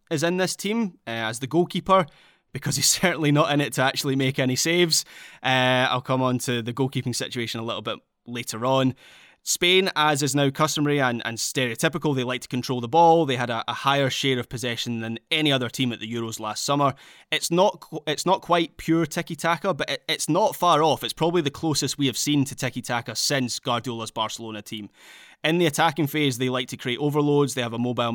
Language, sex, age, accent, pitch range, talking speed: English, male, 20-39, British, 125-155 Hz, 215 wpm